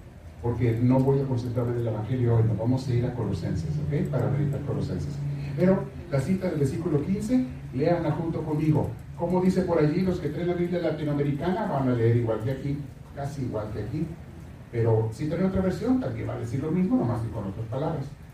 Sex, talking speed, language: male, 210 wpm, Spanish